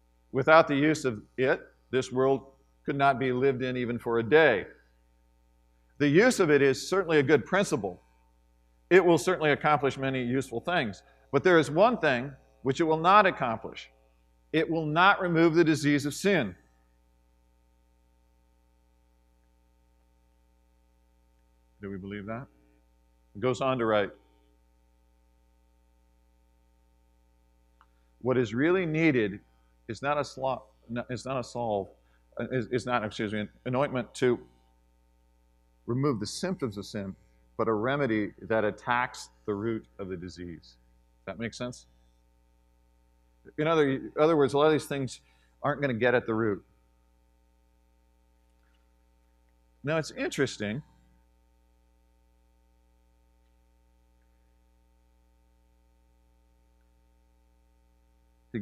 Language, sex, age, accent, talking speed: English, male, 50-69, American, 120 wpm